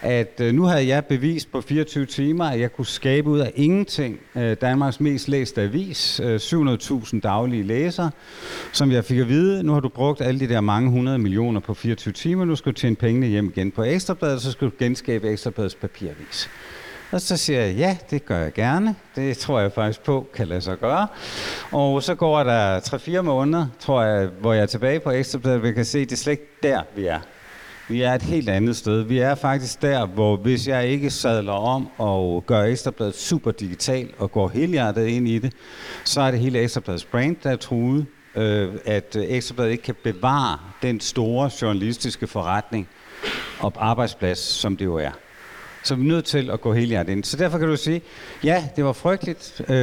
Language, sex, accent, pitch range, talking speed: Danish, male, native, 110-145 Hz, 200 wpm